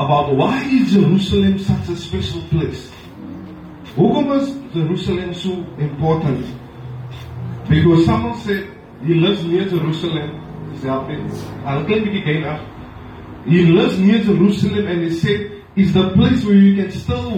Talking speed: 130 wpm